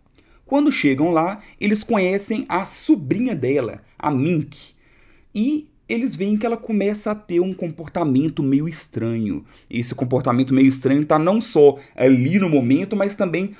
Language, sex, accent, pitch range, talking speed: Portuguese, male, Brazilian, 130-200 Hz, 155 wpm